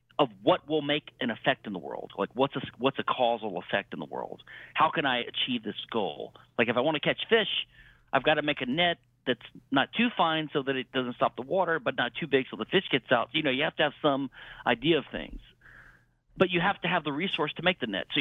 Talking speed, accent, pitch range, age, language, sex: 265 wpm, American, 125-160 Hz, 50-69, English, male